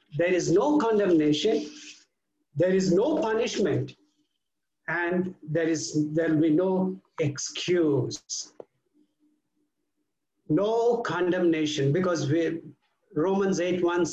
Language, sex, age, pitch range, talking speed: English, male, 60-79, 155-220 Hz, 90 wpm